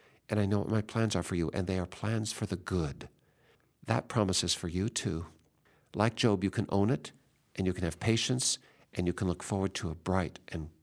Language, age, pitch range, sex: English, 60-79, 95-120 Hz, male